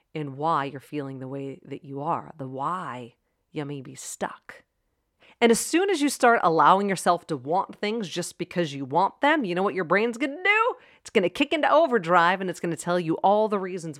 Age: 40-59